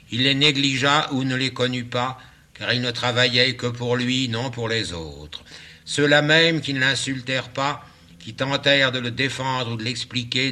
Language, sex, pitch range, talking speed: French, male, 100-125 Hz, 190 wpm